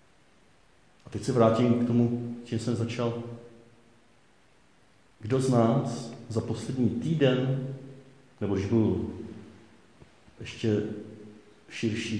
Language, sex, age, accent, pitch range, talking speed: Czech, male, 50-69, native, 110-135 Hz, 95 wpm